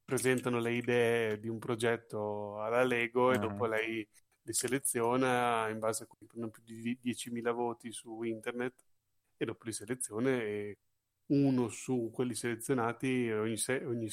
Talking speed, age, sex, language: 145 wpm, 30-49, male, Italian